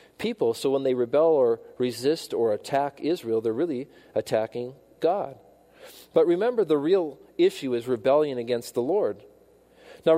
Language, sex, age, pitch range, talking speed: English, male, 40-59, 120-170 Hz, 145 wpm